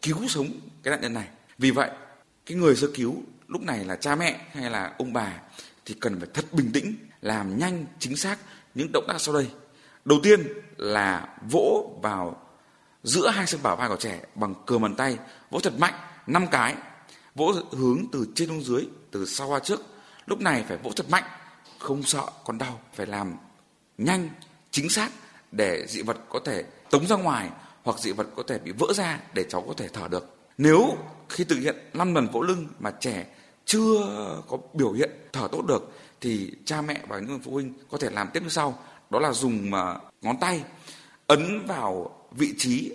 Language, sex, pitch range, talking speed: Vietnamese, male, 130-185 Hz, 200 wpm